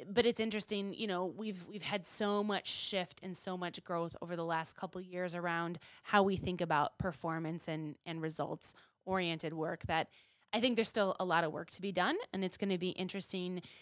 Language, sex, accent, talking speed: English, female, American, 215 wpm